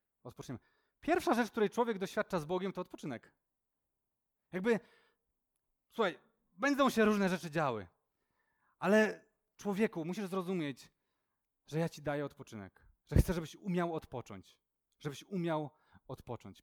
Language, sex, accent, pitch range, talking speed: Polish, male, native, 135-195 Hz, 125 wpm